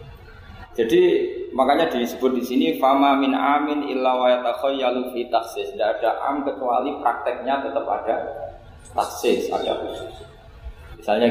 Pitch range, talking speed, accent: 105-140 Hz, 85 wpm, native